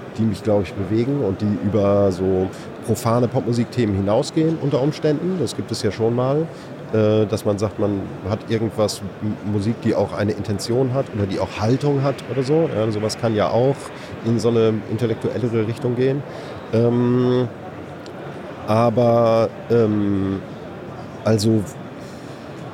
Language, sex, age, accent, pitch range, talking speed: German, male, 40-59, German, 100-120 Hz, 135 wpm